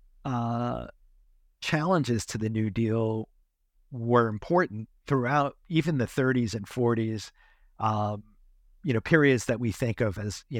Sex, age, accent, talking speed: male, 50-69, American, 135 wpm